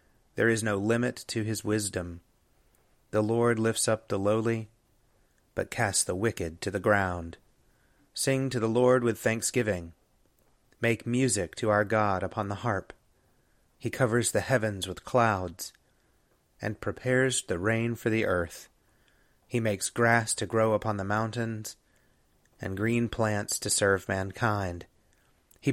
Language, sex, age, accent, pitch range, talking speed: English, male, 30-49, American, 100-120 Hz, 145 wpm